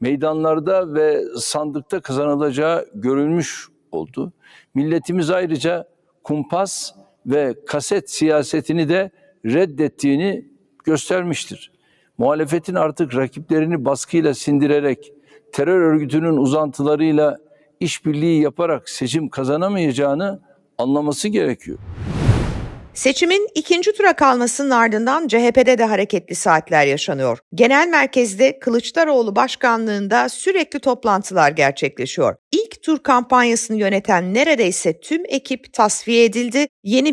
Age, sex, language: 60-79, male, Turkish